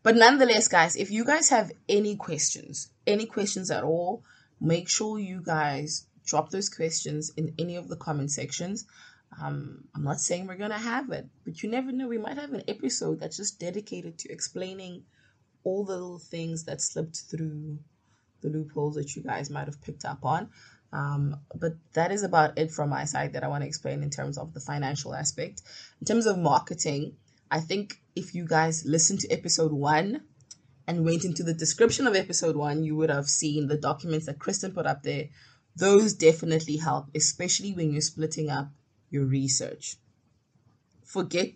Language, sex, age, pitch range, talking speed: English, female, 20-39, 145-180 Hz, 185 wpm